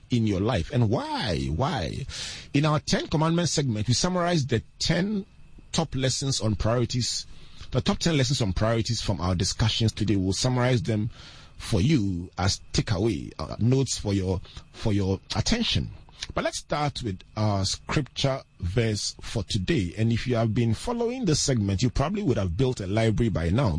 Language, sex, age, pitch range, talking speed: English, male, 30-49, 95-135 Hz, 175 wpm